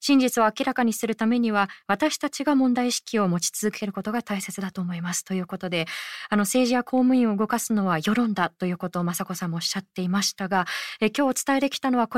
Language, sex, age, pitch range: Japanese, female, 20-39, 195-250 Hz